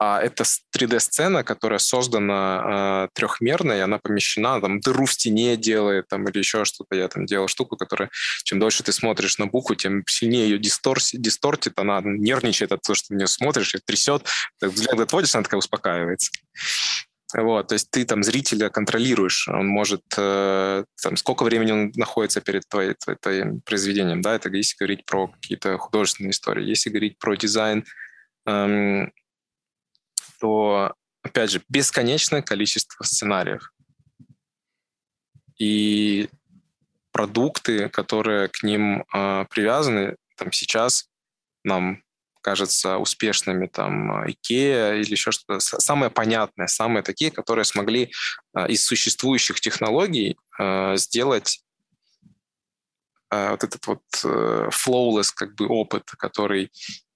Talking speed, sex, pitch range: 130 wpm, male, 100-115 Hz